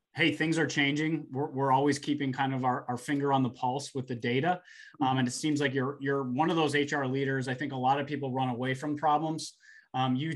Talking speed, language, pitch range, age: 250 wpm, English, 125-145 Hz, 20-39